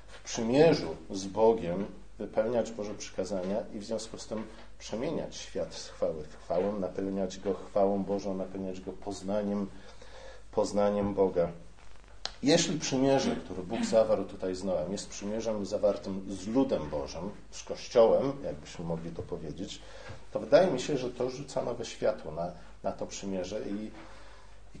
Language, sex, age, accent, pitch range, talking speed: Polish, male, 40-59, native, 90-105 Hz, 150 wpm